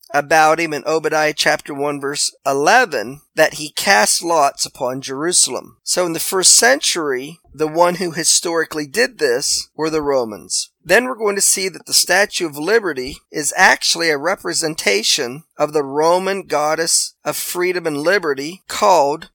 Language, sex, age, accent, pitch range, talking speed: English, male, 40-59, American, 155-200 Hz, 160 wpm